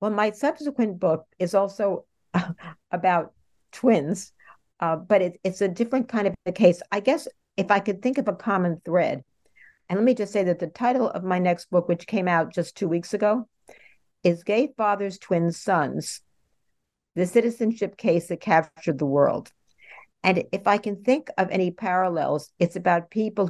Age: 60-79